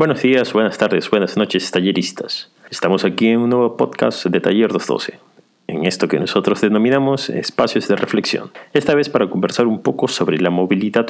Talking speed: 180 wpm